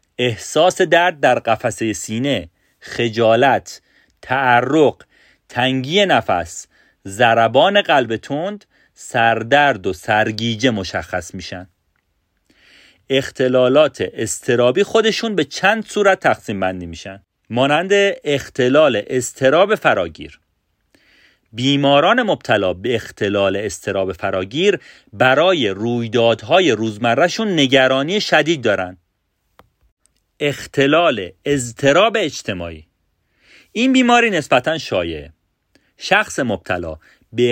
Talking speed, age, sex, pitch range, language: 85 wpm, 40-59, male, 100-150 Hz, Persian